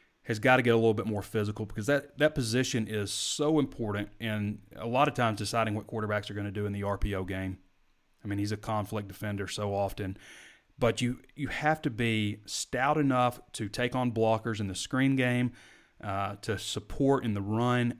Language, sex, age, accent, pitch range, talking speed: English, male, 30-49, American, 100-125 Hz, 205 wpm